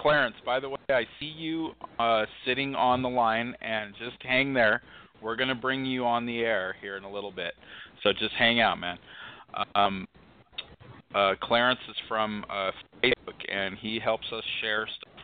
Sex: male